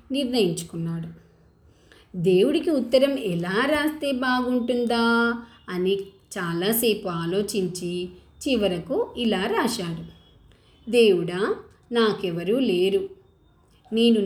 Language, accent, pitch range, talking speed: Telugu, native, 185-255 Hz, 65 wpm